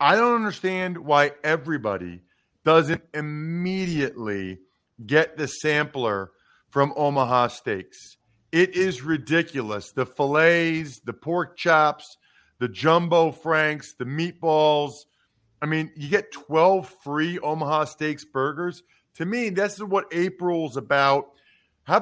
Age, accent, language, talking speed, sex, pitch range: 40-59, American, English, 115 wpm, male, 145-185 Hz